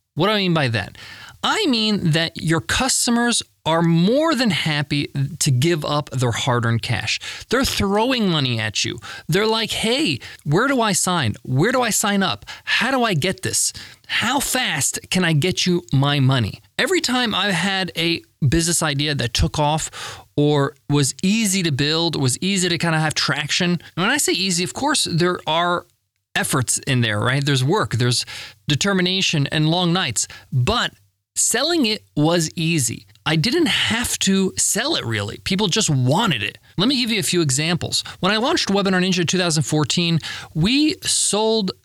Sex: male